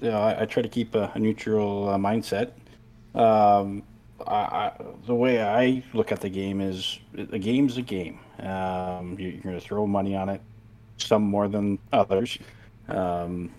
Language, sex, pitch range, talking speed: English, male, 95-115 Hz, 180 wpm